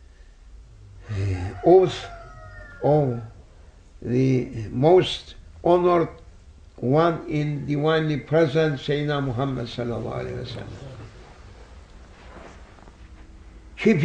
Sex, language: male, English